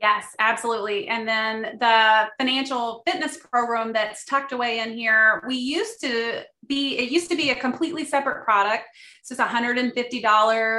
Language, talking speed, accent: English, 160 wpm, American